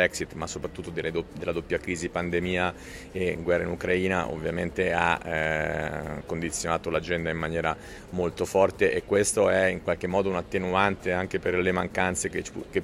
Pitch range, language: 85-95 Hz, Italian